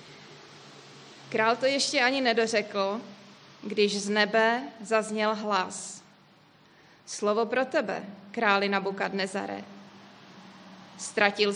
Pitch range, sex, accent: 195-220 Hz, female, native